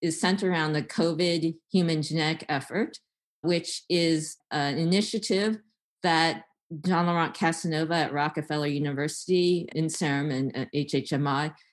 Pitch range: 145-175 Hz